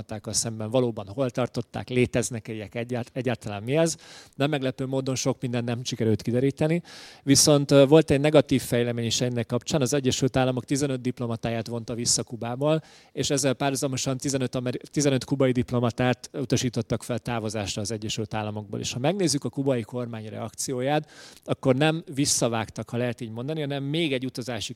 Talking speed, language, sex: 155 wpm, Hungarian, male